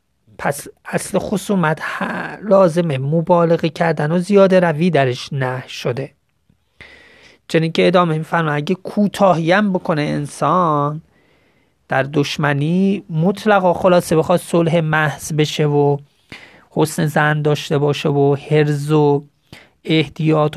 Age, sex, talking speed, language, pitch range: 30-49, male, 105 wpm, Persian, 145-175 Hz